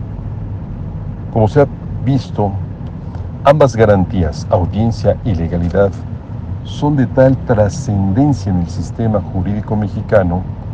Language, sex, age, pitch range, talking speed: Spanish, male, 60-79, 95-115 Hz, 100 wpm